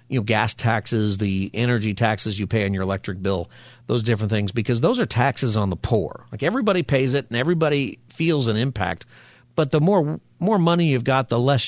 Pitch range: 105-135 Hz